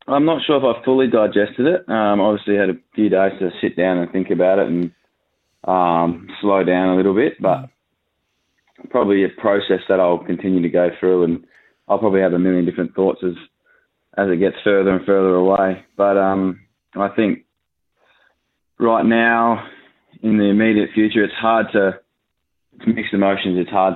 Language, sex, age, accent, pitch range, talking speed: English, male, 20-39, Australian, 85-100 Hz, 185 wpm